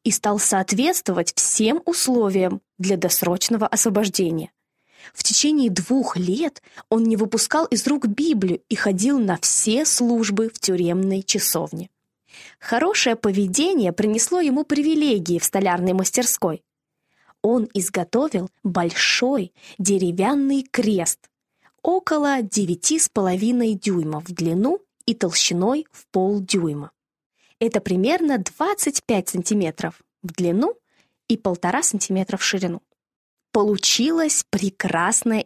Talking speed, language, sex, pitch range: 105 wpm, Russian, female, 185-235 Hz